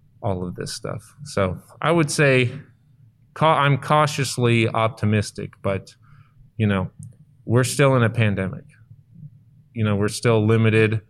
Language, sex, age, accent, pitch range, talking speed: English, male, 30-49, American, 105-125 Hz, 130 wpm